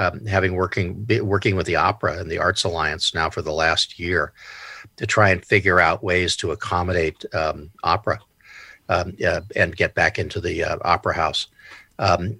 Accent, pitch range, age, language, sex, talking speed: American, 95-110 Hz, 50-69, English, male, 180 wpm